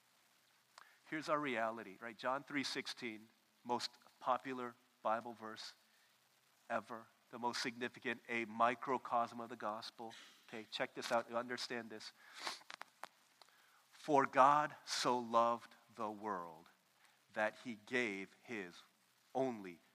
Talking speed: 110 wpm